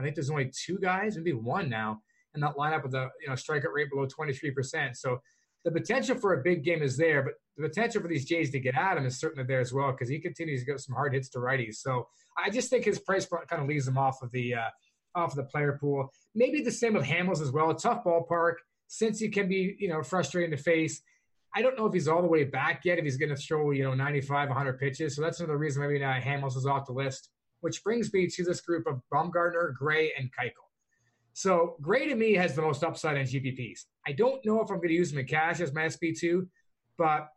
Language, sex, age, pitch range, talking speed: English, male, 20-39, 140-185 Hz, 255 wpm